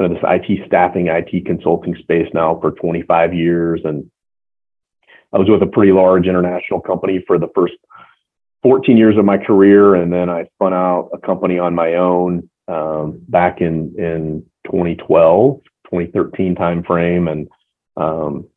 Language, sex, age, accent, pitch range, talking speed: English, male, 40-59, American, 80-95 Hz, 150 wpm